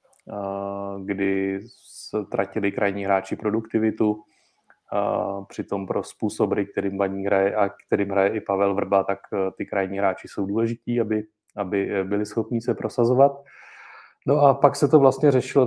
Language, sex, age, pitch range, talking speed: Czech, male, 30-49, 100-125 Hz, 140 wpm